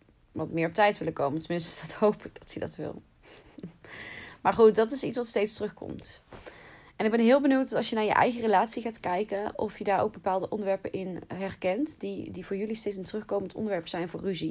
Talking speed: 225 wpm